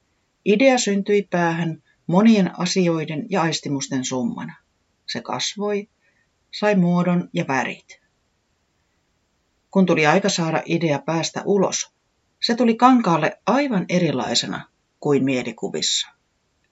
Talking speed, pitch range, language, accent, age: 100 wpm, 135-195 Hz, Finnish, native, 30-49